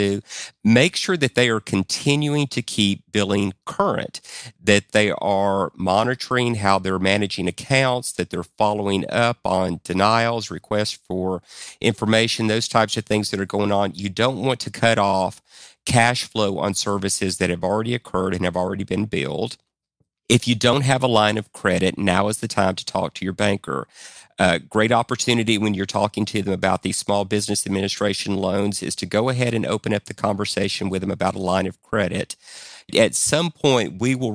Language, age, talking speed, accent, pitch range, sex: English, 50-69, 185 wpm, American, 95-115 Hz, male